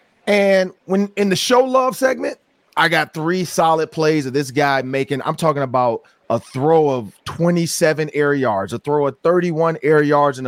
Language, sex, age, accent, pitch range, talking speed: English, male, 30-49, American, 130-170 Hz, 185 wpm